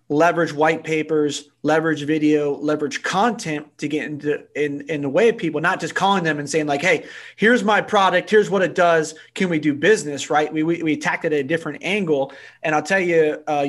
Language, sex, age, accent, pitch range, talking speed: English, male, 30-49, American, 140-175 Hz, 220 wpm